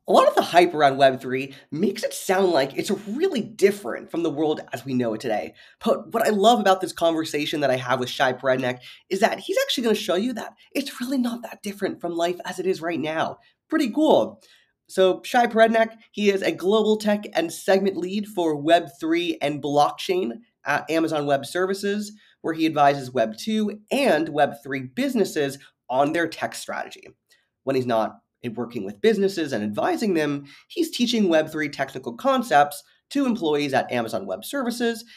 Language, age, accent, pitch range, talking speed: English, 20-39, American, 135-225 Hz, 185 wpm